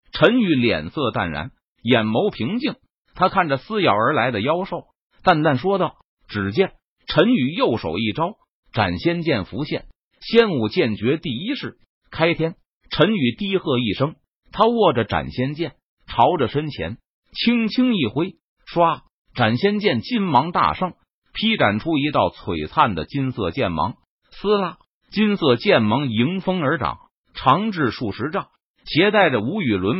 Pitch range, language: 120-190 Hz, Chinese